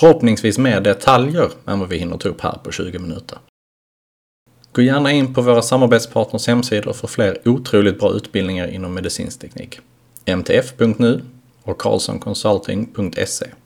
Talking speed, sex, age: 130 wpm, male, 30-49